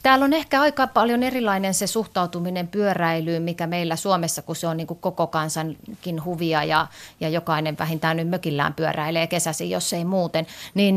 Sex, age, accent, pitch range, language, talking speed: female, 30-49, native, 165-210 Hz, Finnish, 170 wpm